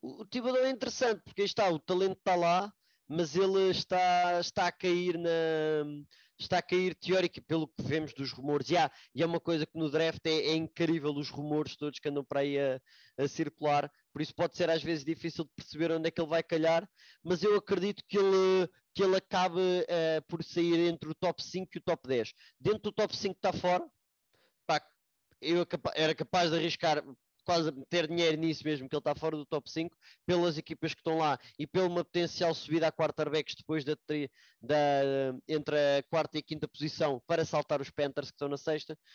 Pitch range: 145-170 Hz